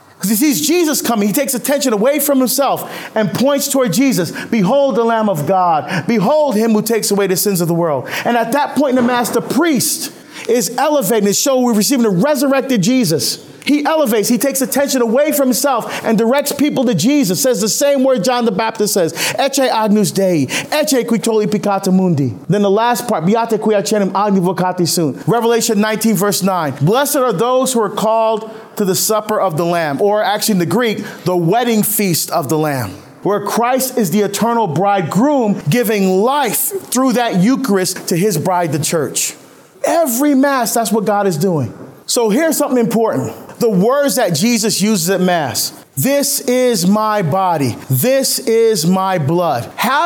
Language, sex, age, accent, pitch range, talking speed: English, male, 40-59, American, 200-265 Hz, 185 wpm